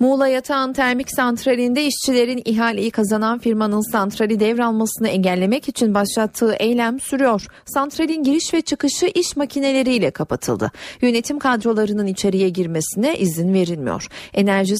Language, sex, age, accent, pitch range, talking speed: Turkish, female, 40-59, native, 185-245 Hz, 120 wpm